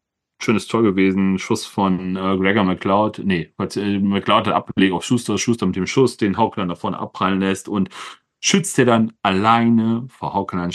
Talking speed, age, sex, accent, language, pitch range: 175 wpm, 30-49, male, German, German, 90-110 Hz